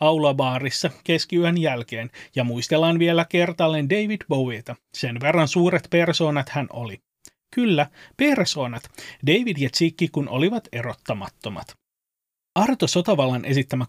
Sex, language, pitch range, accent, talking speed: male, Finnish, 135-170 Hz, native, 110 wpm